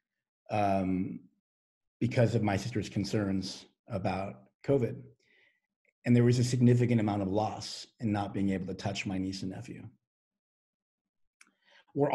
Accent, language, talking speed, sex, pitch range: American, English, 135 wpm, male, 100-120 Hz